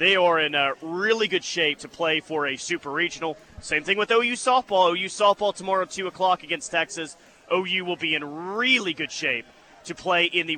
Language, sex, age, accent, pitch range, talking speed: English, male, 30-49, American, 160-210 Hz, 210 wpm